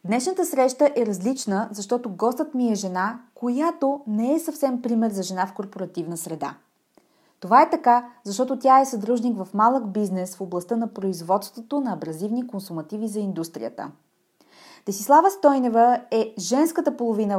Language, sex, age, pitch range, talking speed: Bulgarian, female, 20-39, 200-265 Hz, 150 wpm